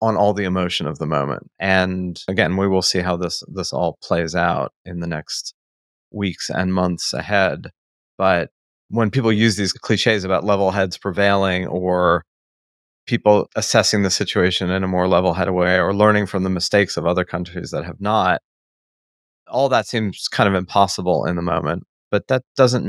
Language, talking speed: English, 180 wpm